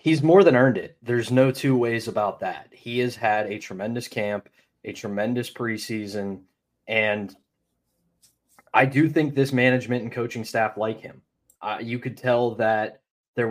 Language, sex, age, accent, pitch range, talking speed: English, male, 20-39, American, 110-135 Hz, 165 wpm